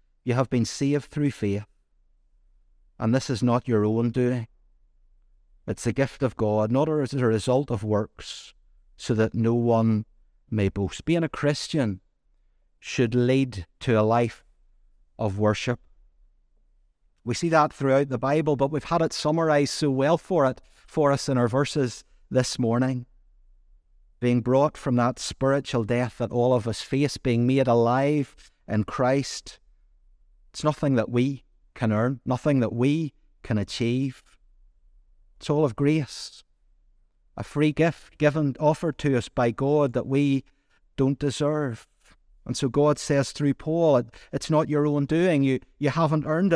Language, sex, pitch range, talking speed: English, male, 115-150 Hz, 155 wpm